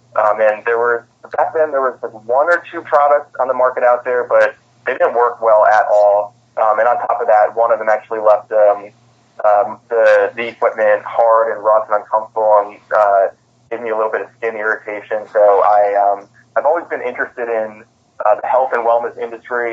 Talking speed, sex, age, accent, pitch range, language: 215 wpm, male, 20-39, American, 105-120 Hz, English